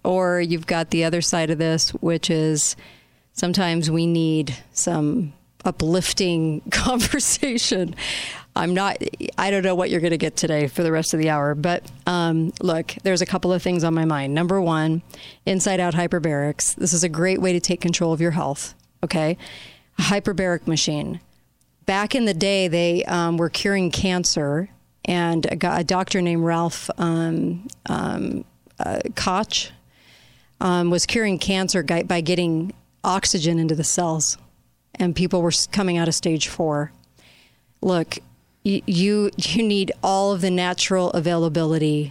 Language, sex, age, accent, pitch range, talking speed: English, female, 40-59, American, 160-185 Hz, 155 wpm